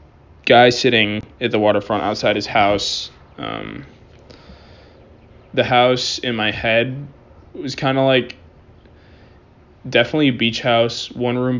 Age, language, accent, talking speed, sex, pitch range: 20-39, English, American, 125 wpm, male, 105-125 Hz